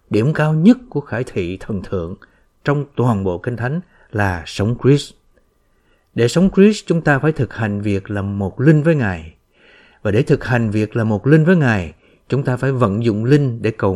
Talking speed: 205 wpm